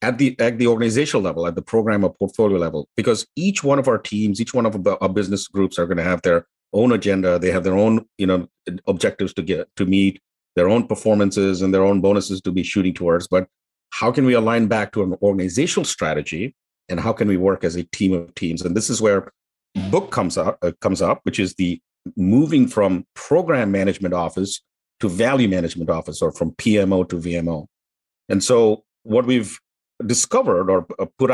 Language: English